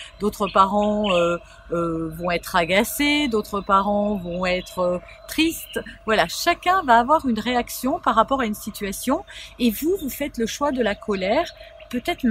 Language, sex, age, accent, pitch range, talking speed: French, female, 40-59, French, 210-285 Hz, 165 wpm